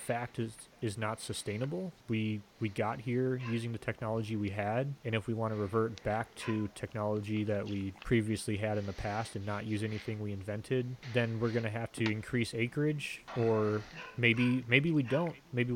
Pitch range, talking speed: 110-125 Hz, 190 wpm